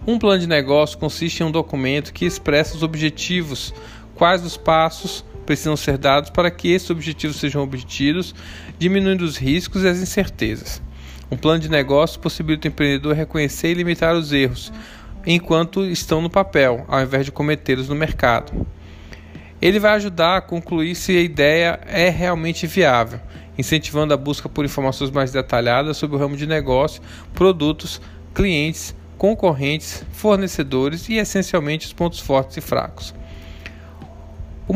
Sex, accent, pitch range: male, Brazilian, 130-175 Hz